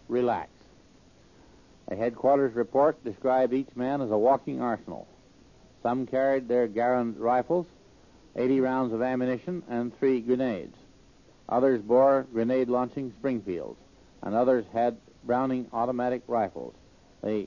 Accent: American